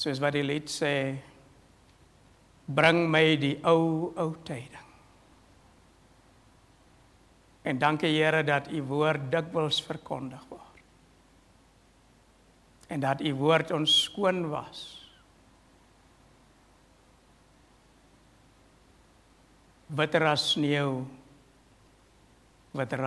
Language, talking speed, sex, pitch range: English, 80 wpm, male, 120-155 Hz